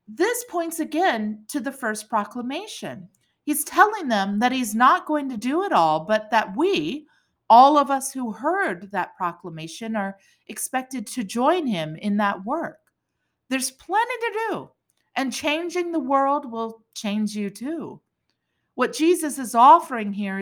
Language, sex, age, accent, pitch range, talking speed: English, female, 40-59, American, 200-295 Hz, 155 wpm